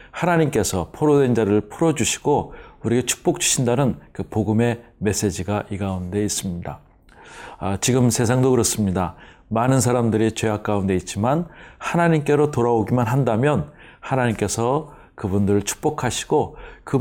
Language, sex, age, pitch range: Korean, male, 40-59, 105-135 Hz